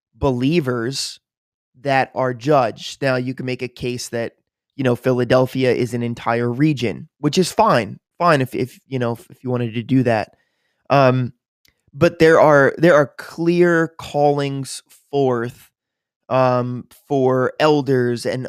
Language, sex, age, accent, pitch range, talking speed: English, male, 20-39, American, 125-145 Hz, 150 wpm